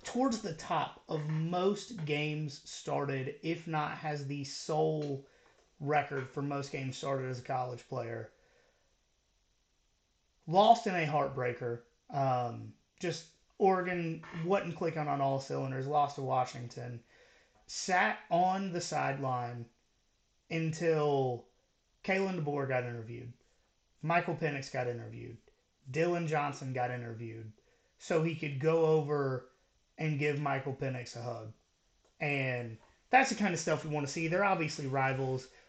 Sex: male